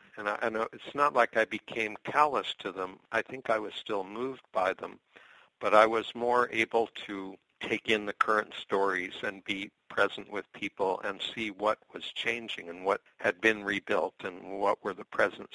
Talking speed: 195 wpm